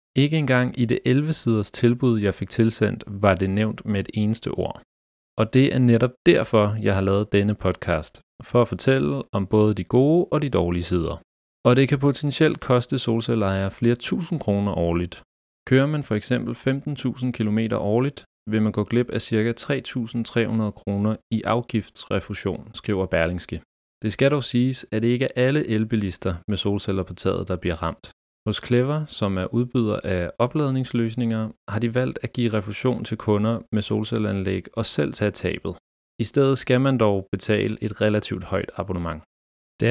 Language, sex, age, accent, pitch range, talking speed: Danish, male, 30-49, native, 95-125 Hz, 175 wpm